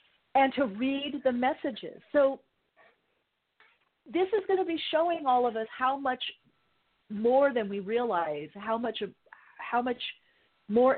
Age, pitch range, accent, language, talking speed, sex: 50-69, 185-230 Hz, American, English, 140 wpm, female